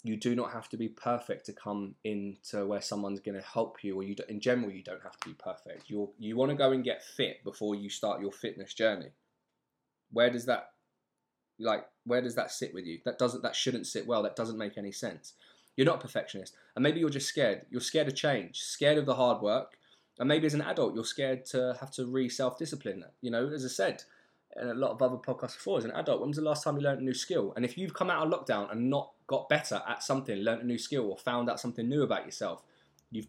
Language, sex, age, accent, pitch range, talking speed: English, male, 20-39, British, 110-135 Hz, 260 wpm